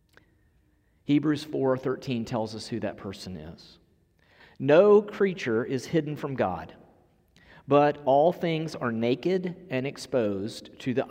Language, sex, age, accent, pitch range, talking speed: English, male, 40-59, American, 125-180 Hz, 125 wpm